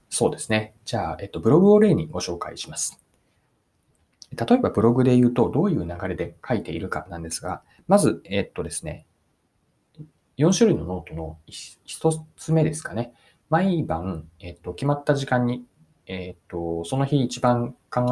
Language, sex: Japanese, male